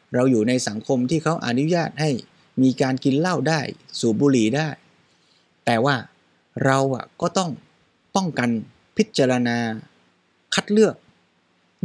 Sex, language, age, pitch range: male, Thai, 20-39, 120-155 Hz